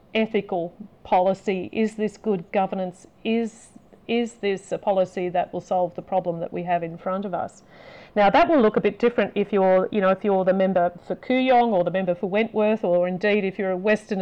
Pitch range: 185-220 Hz